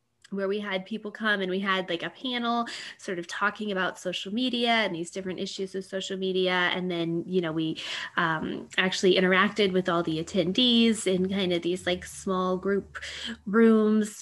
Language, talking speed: English, 185 wpm